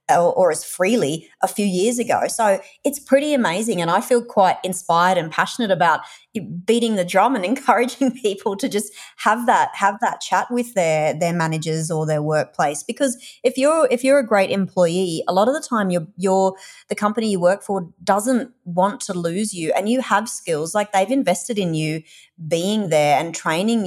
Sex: female